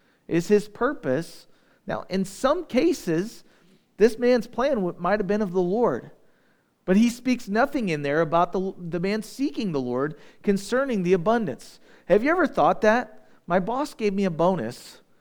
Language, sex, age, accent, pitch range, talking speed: English, male, 40-59, American, 160-210 Hz, 170 wpm